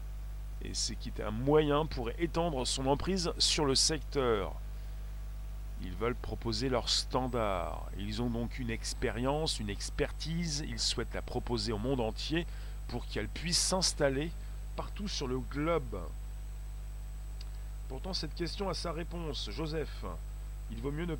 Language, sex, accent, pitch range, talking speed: French, male, French, 125-160 Hz, 140 wpm